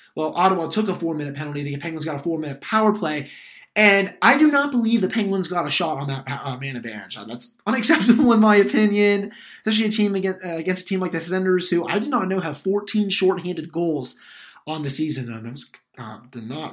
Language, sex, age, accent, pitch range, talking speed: English, male, 20-39, American, 145-185 Hz, 220 wpm